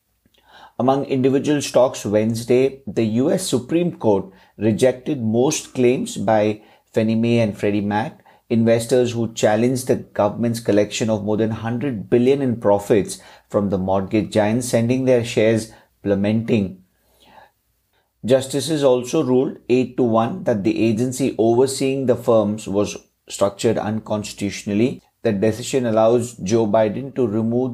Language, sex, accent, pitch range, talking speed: English, male, Indian, 105-125 Hz, 130 wpm